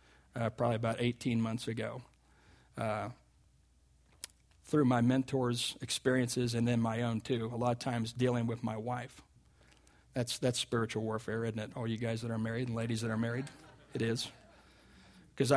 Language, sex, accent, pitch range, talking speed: English, male, American, 110-120 Hz, 170 wpm